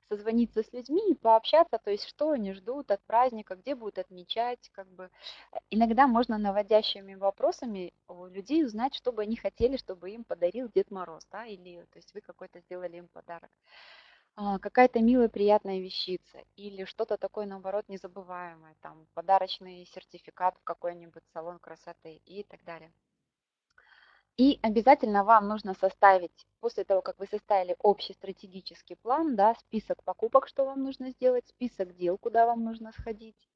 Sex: female